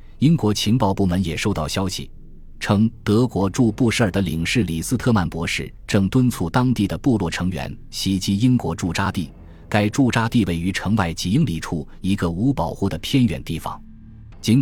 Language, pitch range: Chinese, 85-115 Hz